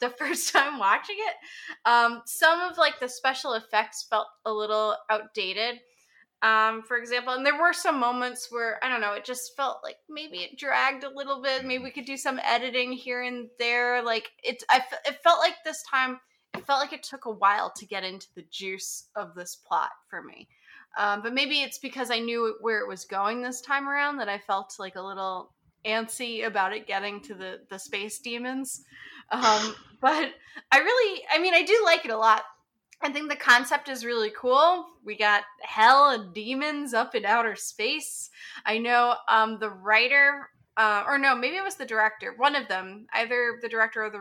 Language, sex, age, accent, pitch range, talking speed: English, female, 20-39, American, 210-270 Hz, 200 wpm